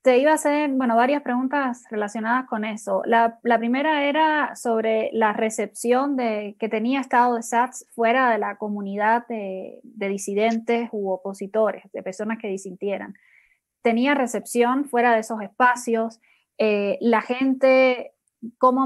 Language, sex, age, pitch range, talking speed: Spanish, female, 20-39, 205-240 Hz, 145 wpm